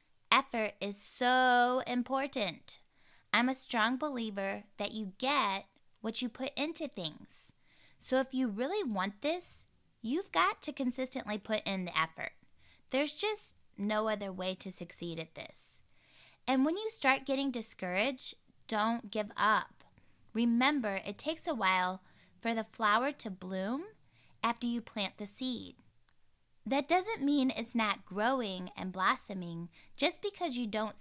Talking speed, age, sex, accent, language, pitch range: 145 wpm, 20-39, female, American, English, 195-265 Hz